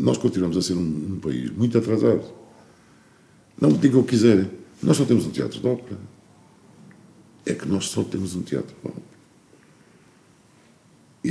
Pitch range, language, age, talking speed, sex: 70-100 Hz, Portuguese, 50-69, 165 wpm, male